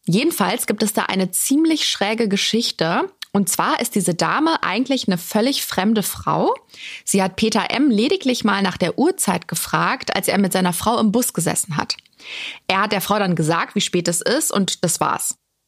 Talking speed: 190 wpm